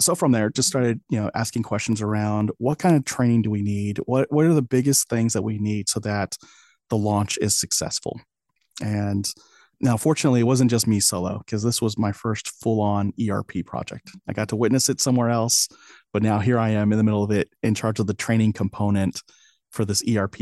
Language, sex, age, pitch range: English, male, 30-49, 105-120 Hz